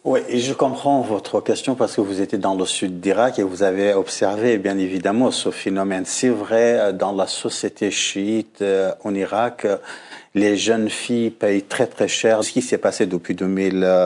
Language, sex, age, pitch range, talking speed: French, male, 50-69, 100-115 Hz, 185 wpm